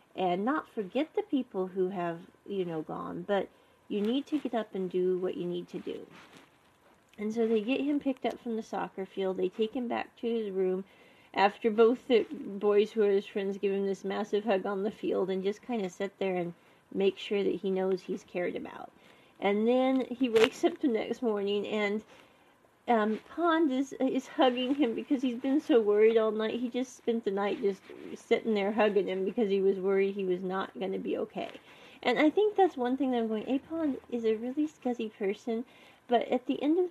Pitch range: 200-260 Hz